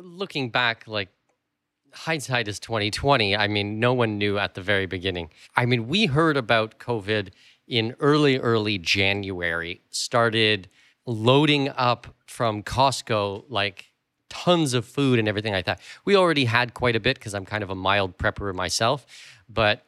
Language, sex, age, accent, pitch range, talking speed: English, male, 30-49, American, 100-125 Hz, 160 wpm